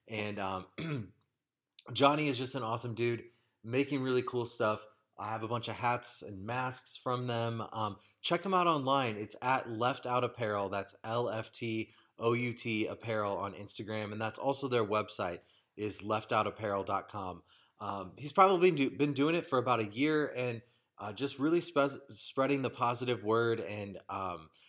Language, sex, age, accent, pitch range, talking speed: English, male, 20-39, American, 105-130 Hz, 175 wpm